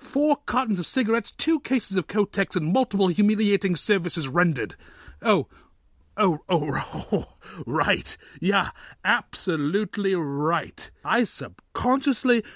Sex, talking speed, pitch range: male, 110 wpm, 155-230 Hz